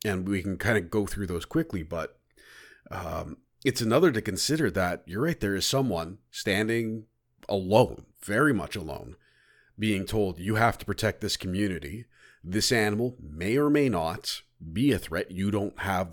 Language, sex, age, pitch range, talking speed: English, male, 40-59, 90-110 Hz, 170 wpm